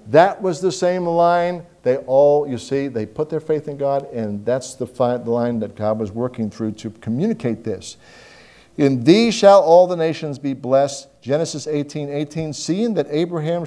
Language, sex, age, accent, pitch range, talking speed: English, male, 50-69, American, 125-175 Hz, 190 wpm